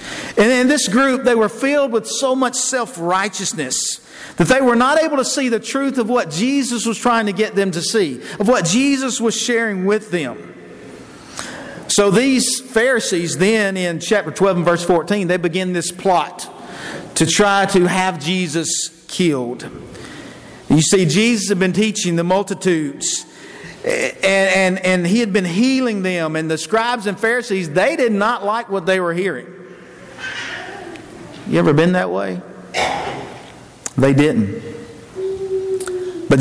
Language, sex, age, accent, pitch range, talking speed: English, male, 50-69, American, 180-245 Hz, 155 wpm